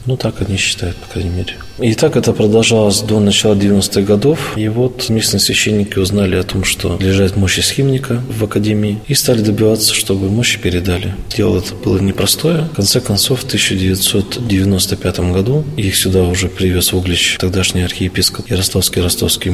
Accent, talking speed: native, 165 wpm